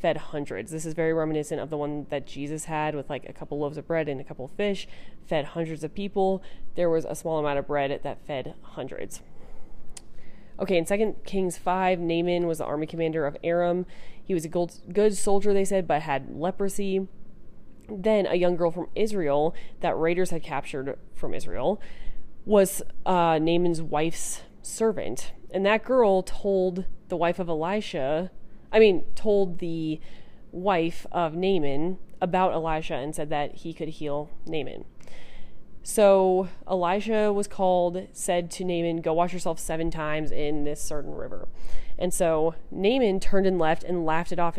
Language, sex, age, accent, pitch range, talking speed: English, female, 20-39, American, 160-190 Hz, 170 wpm